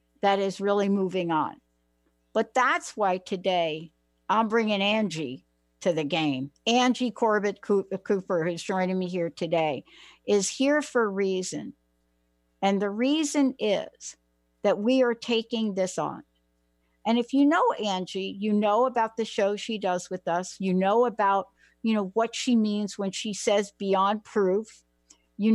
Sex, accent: female, American